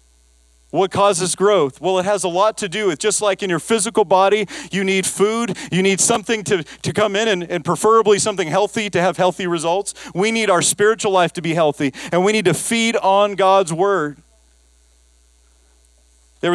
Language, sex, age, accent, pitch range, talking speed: English, male, 40-59, American, 150-205 Hz, 190 wpm